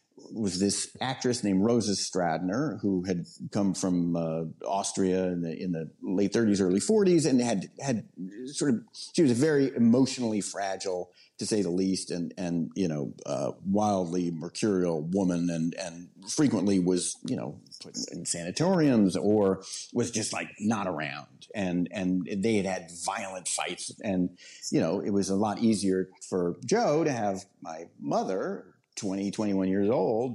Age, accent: 50-69, American